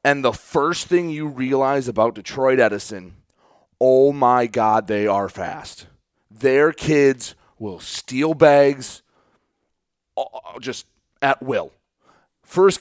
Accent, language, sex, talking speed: American, English, male, 110 wpm